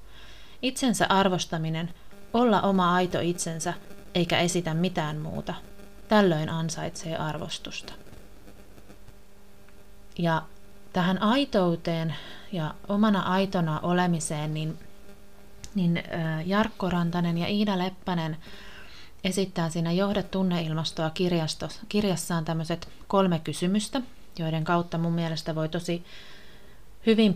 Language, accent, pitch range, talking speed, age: Finnish, native, 160-195 Hz, 90 wpm, 30-49